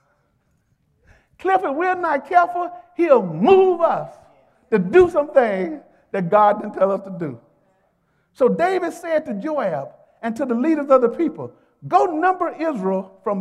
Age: 50-69